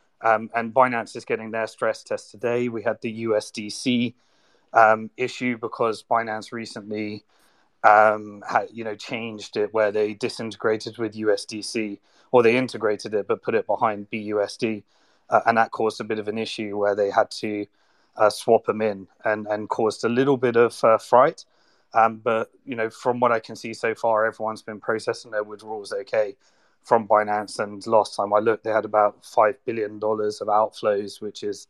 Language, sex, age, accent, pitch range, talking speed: English, male, 30-49, British, 105-115 Hz, 185 wpm